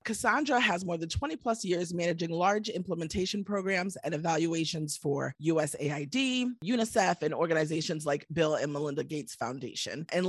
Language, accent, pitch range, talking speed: English, American, 155-195 Hz, 140 wpm